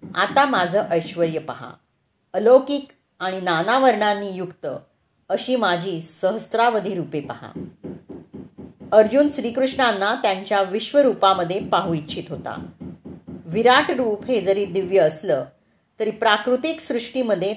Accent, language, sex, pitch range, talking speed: native, Marathi, female, 175-235 Hz, 100 wpm